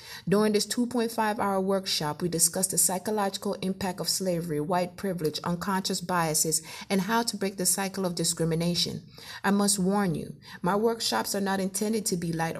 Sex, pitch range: female, 175-210 Hz